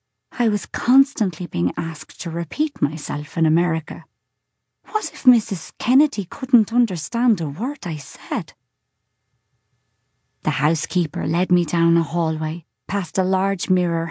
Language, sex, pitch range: English, female, 160-215 Hz